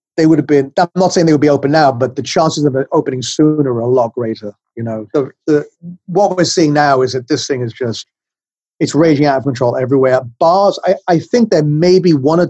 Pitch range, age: 125-165 Hz, 40-59